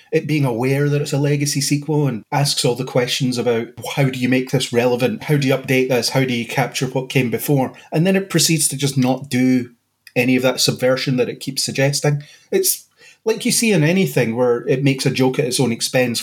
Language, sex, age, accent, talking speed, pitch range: English, male, 30-49, British, 235 wpm, 125-150 Hz